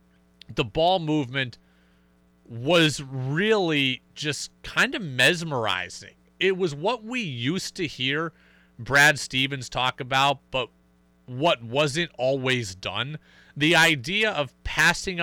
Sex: male